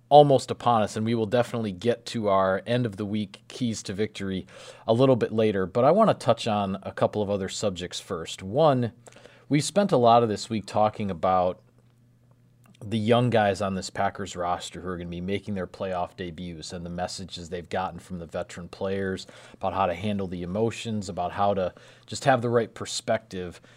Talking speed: 205 wpm